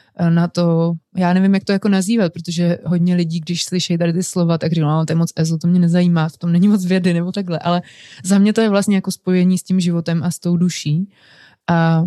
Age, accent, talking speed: 20-39, native, 250 wpm